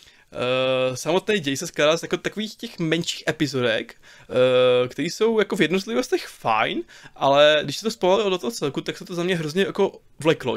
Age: 20-39